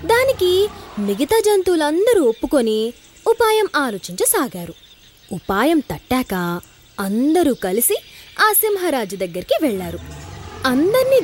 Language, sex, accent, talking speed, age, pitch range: Telugu, female, native, 80 wpm, 20-39, 235-370 Hz